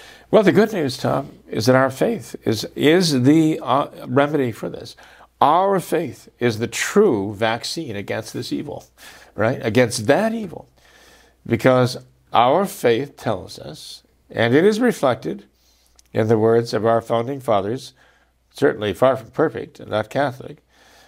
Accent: American